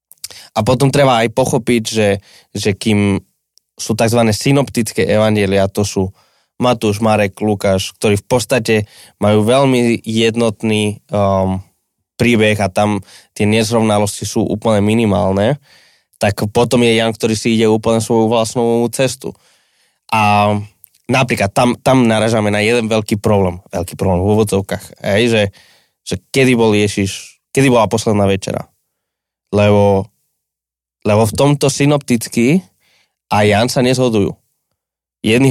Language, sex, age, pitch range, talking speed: Slovak, male, 20-39, 100-120 Hz, 125 wpm